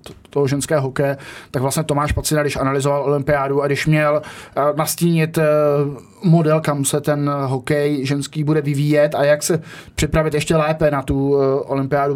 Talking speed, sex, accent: 155 wpm, male, native